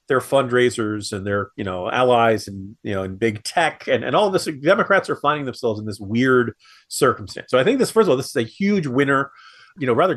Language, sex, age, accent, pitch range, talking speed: English, male, 40-59, American, 110-150 Hz, 235 wpm